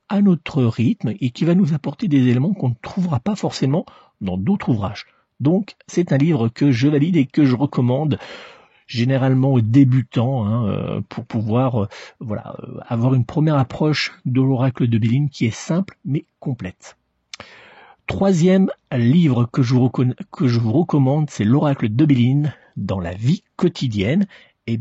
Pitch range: 120-165 Hz